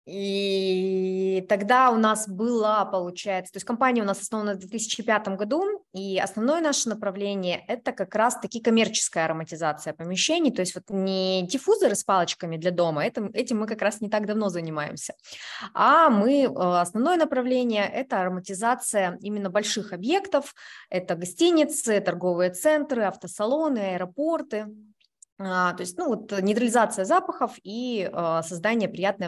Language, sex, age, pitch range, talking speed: Russian, female, 20-39, 185-245 Hz, 135 wpm